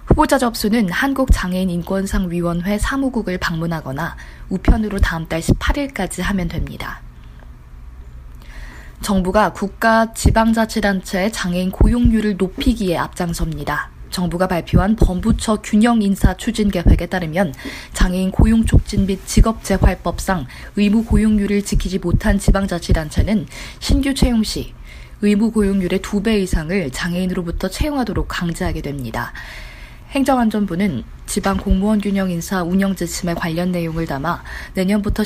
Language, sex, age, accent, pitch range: Korean, female, 20-39, native, 165-210 Hz